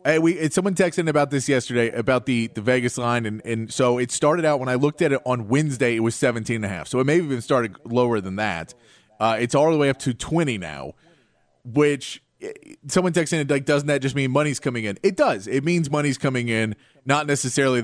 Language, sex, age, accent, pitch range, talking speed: English, male, 30-49, American, 120-170 Hz, 240 wpm